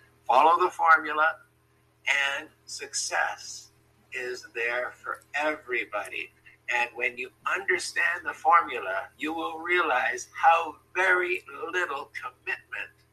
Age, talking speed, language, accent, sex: 60-79, 100 wpm, English, American, male